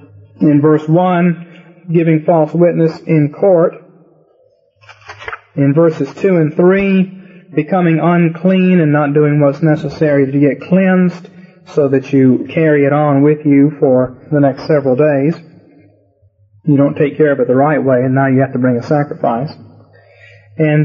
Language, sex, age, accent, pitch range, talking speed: English, male, 40-59, American, 135-165 Hz, 155 wpm